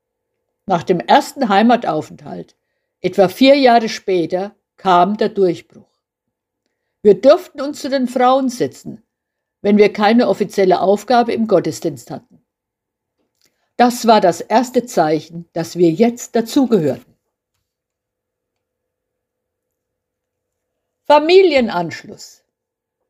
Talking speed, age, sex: 95 wpm, 60-79, female